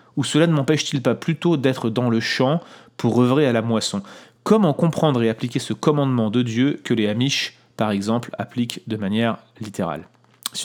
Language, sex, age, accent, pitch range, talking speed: French, male, 30-49, French, 115-150 Hz, 185 wpm